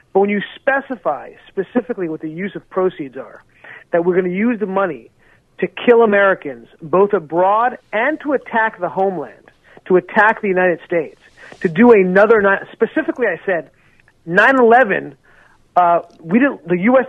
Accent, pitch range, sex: American, 170-225 Hz, male